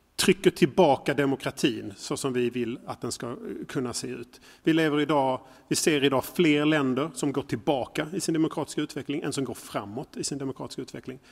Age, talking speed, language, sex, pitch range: 40-59, 190 wpm, Swedish, male, 125-150 Hz